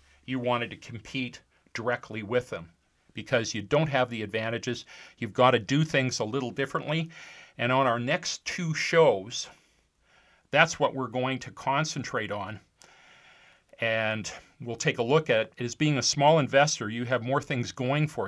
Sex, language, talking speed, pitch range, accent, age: male, English, 165 wpm, 115-145 Hz, American, 40-59